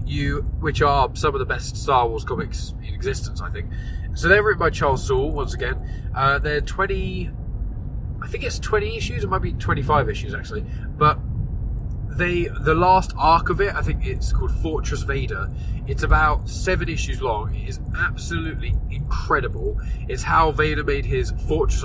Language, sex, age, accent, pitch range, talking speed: English, male, 20-39, British, 105-160 Hz, 175 wpm